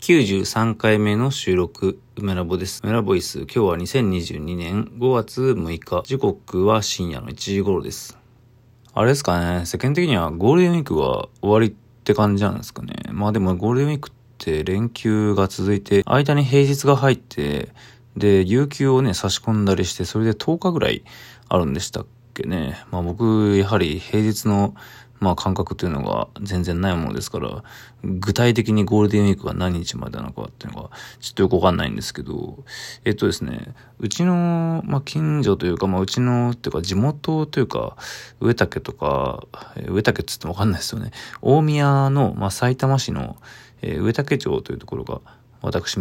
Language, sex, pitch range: Japanese, male, 95-130 Hz